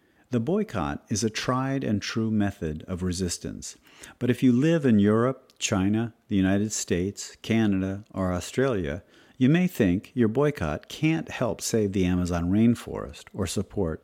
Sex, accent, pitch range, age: male, American, 85-120 Hz, 50-69